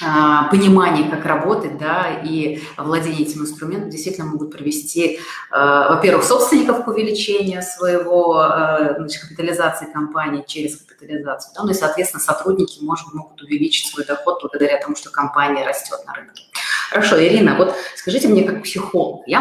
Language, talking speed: Russian, 135 wpm